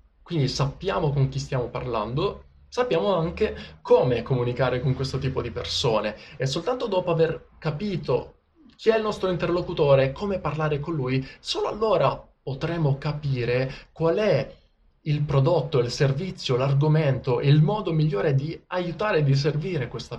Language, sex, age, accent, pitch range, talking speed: Italian, male, 20-39, native, 130-170 Hz, 150 wpm